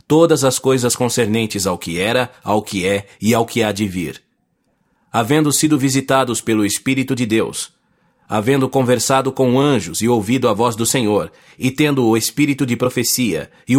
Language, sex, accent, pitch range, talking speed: English, male, Brazilian, 115-135 Hz, 175 wpm